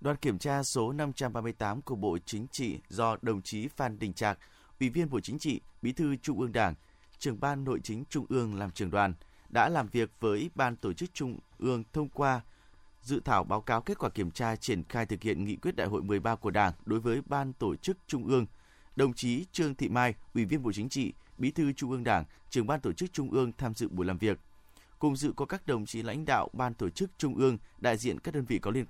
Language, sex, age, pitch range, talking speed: Vietnamese, male, 20-39, 105-140 Hz, 245 wpm